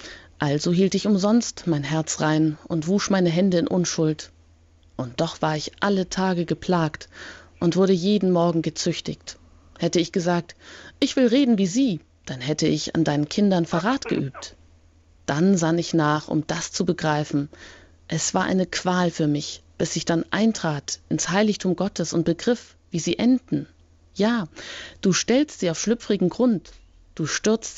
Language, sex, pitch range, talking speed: German, female, 150-195 Hz, 165 wpm